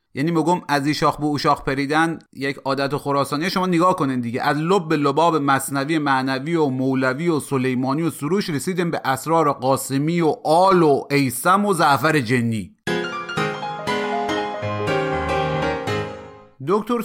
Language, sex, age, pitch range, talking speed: Persian, male, 30-49, 130-175 Hz, 135 wpm